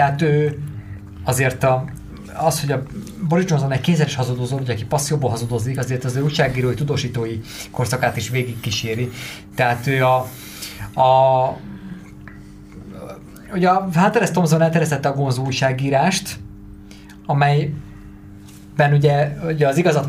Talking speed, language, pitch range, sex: 120 wpm, Hungarian, 120-150 Hz, male